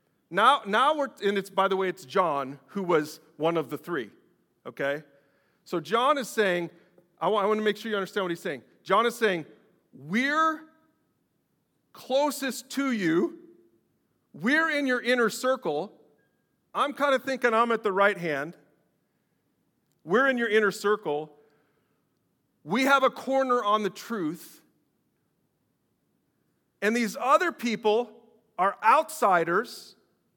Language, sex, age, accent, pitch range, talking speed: English, male, 40-59, American, 175-245 Hz, 140 wpm